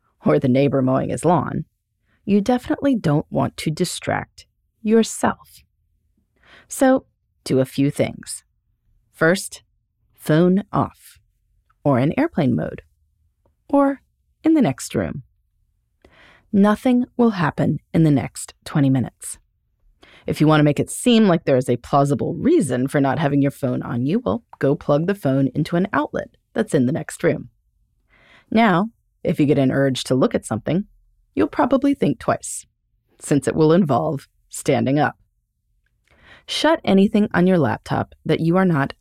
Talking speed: 155 wpm